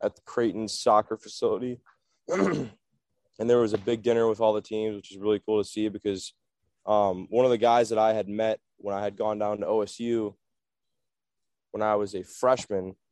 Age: 20-39